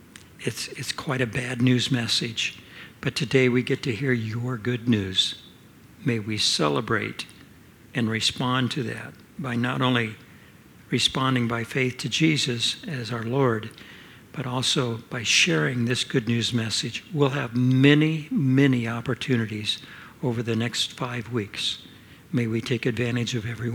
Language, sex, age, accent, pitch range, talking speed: English, male, 60-79, American, 120-145 Hz, 145 wpm